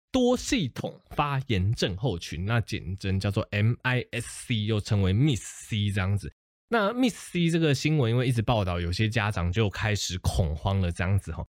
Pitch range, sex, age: 95-135 Hz, male, 20-39